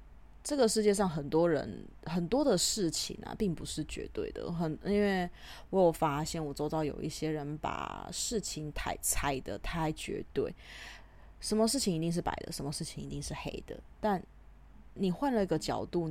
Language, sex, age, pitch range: Chinese, female, 20-39, 130-190 Hz